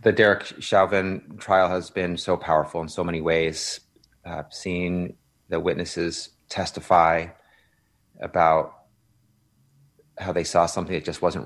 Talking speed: 130 wpm